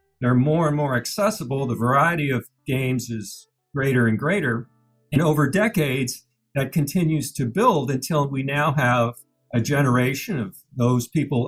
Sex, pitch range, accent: male, 125-170 Hz, American